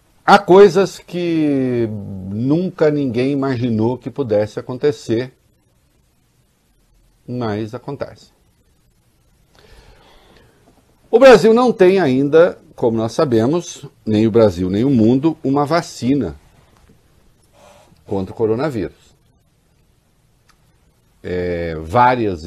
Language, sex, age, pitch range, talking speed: Portuguese, male, 50-69, 90-135 Hz, 85 wpm